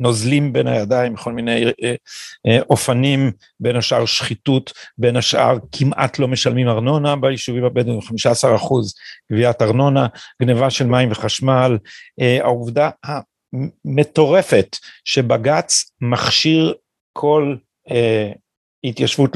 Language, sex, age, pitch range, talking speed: Hebrew, male, 50-69, 120-150 Hz, 110 wpm